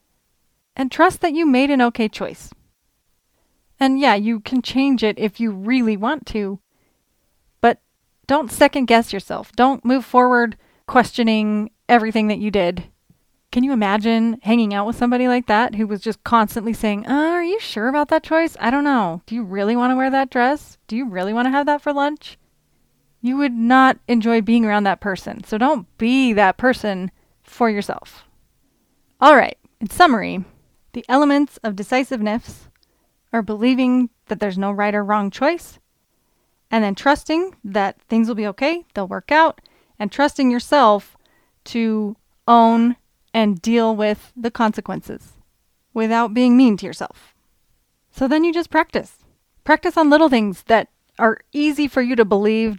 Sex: female